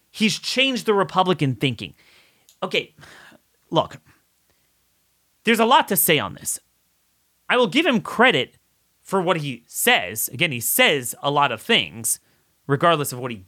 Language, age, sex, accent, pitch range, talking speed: English, 30-49, male, American, 140-210 Hz, 150 wpm